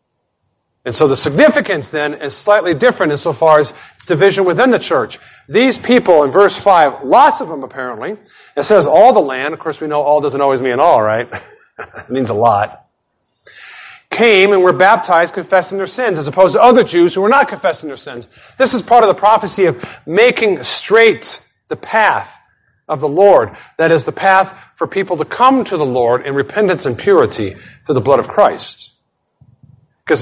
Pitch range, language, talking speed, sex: 130-195 Hz, English, 190 wpm, male